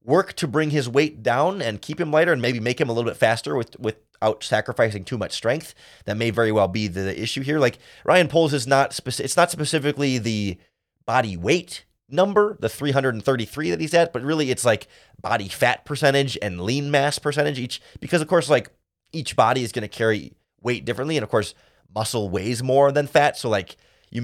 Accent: American